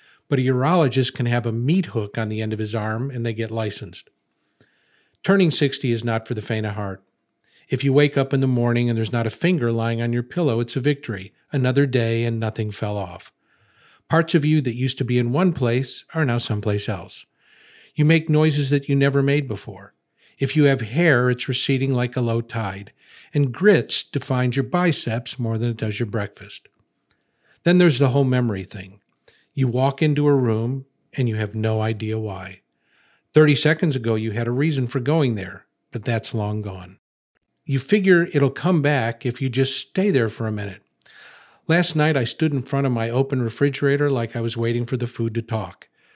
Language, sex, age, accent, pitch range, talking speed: English, male, 50-69, American, 110-140 Hz, 205 wpm